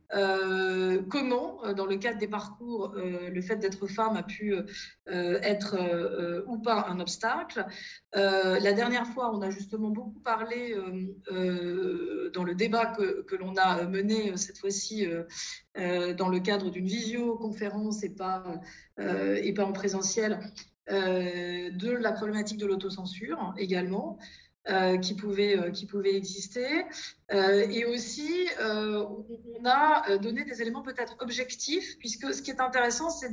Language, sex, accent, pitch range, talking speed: Italian, female, French, 190-230 Hz, 145 wpm